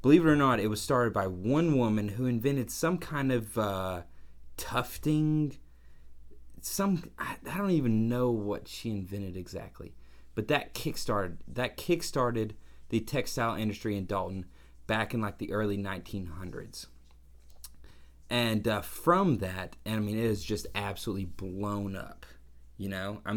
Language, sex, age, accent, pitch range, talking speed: English, male, 30-49, American, 85-115 Hz, 150 wpm